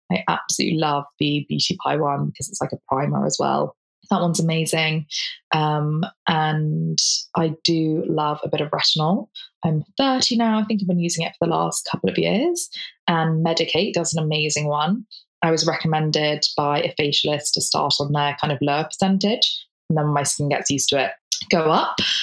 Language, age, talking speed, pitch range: English, 20-39, 190 wpm, 155-190 Hz